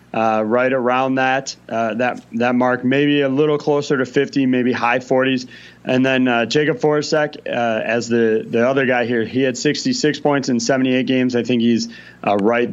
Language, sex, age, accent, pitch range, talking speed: English, male, 30-49, American, 120-140 Hz, 195 wpm